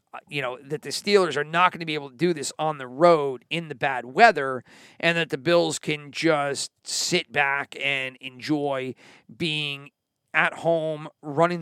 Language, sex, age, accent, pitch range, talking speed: English, male, 40-59, American, 145-180 Hz, 180 wpm